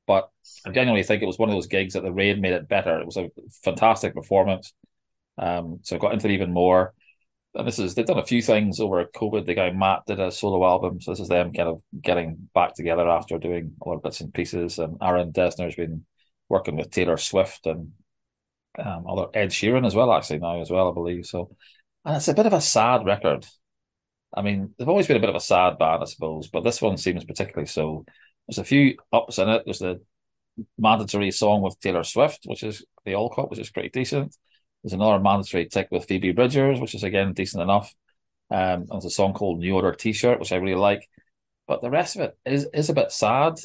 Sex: male